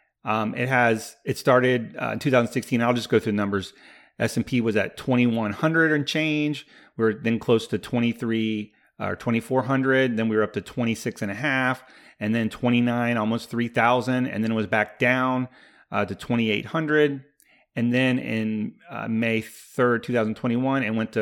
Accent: American